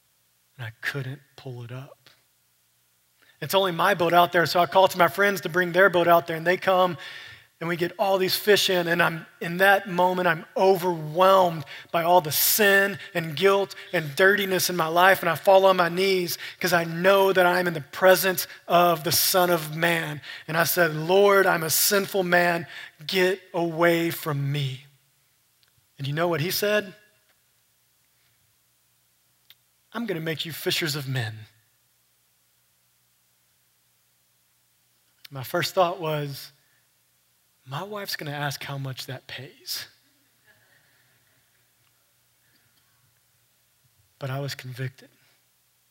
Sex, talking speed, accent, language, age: male, 150 wpm, American, English, 30-49